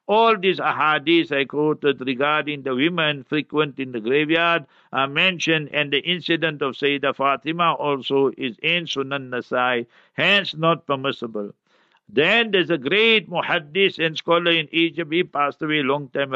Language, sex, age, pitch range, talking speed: English, male, 60-79, 140-180 Hz, 155 wpm